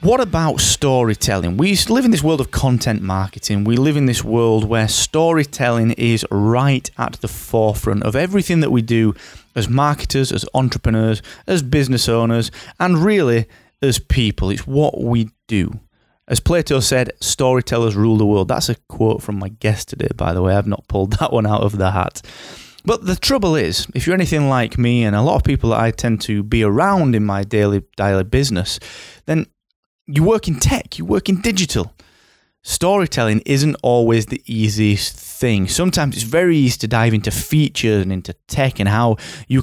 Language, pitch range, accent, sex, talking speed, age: English, 110-140 Hz, British, male, 185 wpm, 30-49